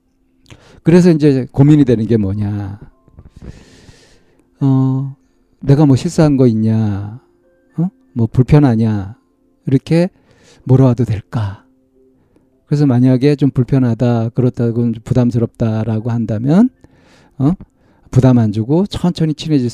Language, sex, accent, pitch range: Korean, male, native, 110-150 Hz